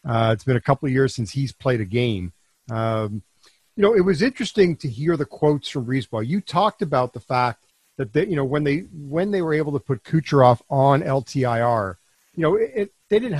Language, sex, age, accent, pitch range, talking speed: English, male, 50-69, American, 130-175 Hz, 225 wpm